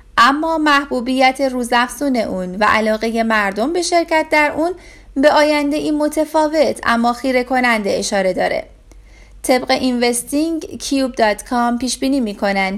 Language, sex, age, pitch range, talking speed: Persian, female, 30-49, 230-295 Hz, 130 wpm